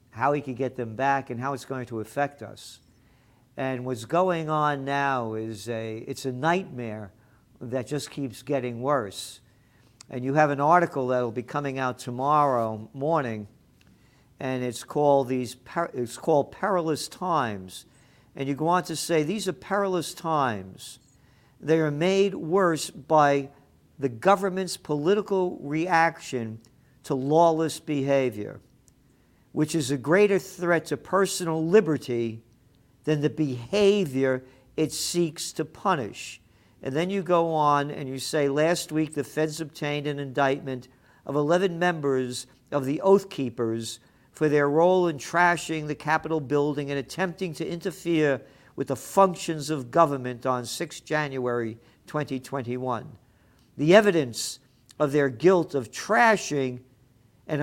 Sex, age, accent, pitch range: male, 50-69, American, 125-160 Hz